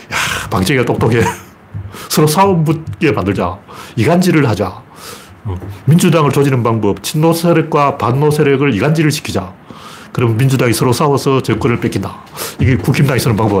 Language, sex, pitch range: Korean, male, 105-155 Hz